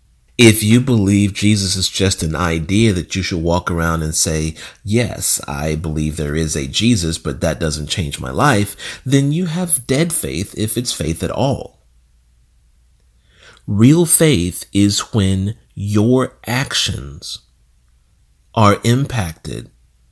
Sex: male